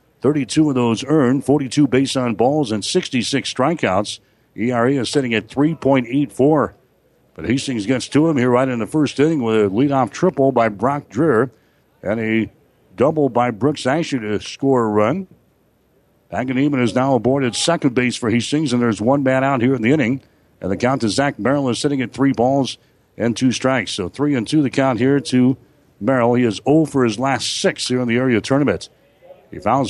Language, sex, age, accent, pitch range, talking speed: English, male, 60-79, American, 120-140 Hz, 195 wpm